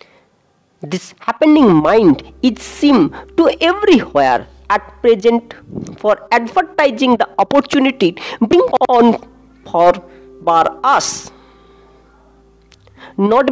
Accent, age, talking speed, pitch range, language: Indian, 50-69, 85 wpm, 195-285 Hz, English